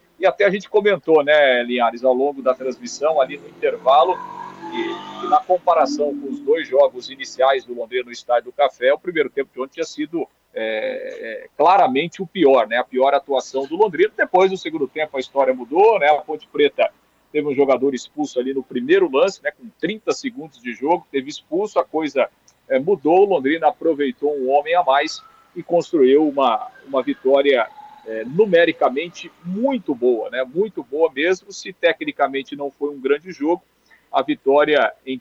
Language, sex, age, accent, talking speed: Portuguese, male, 50-69, Brazilian, 180 wpm